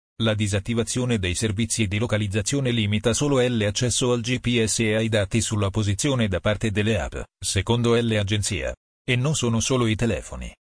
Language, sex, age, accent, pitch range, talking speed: Italian, male, 40-59, native, 105-120 Hz, 155 wpm